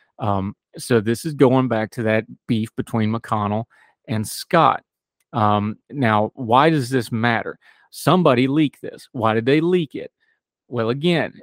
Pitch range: 110-135 Hz